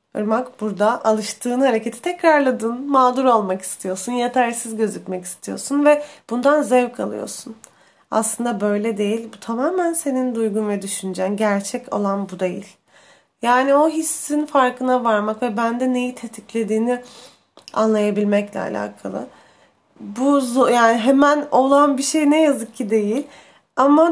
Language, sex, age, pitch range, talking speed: Turkish, female, 30-49, 215-270 Hz, 120 wpm